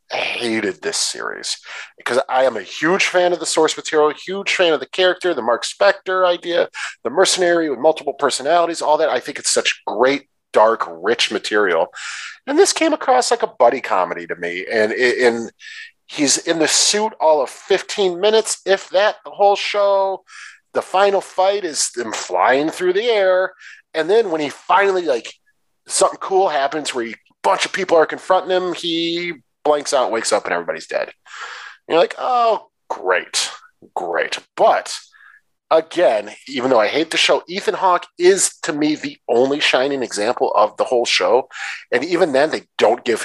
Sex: male